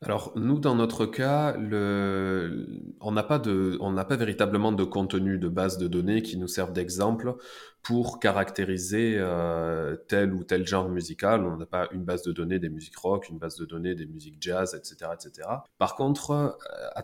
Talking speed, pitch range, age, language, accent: 185 wpm, 90-110 Hz, 20-39, French, French